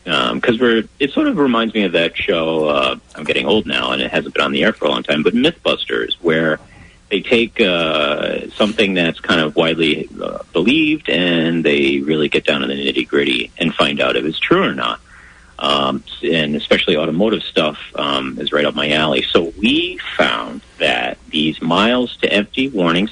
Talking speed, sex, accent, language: 200 wpm, male, American, English